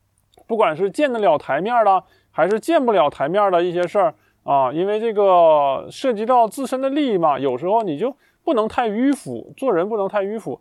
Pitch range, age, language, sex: 165-230 Hz, 20-39, Chinese, male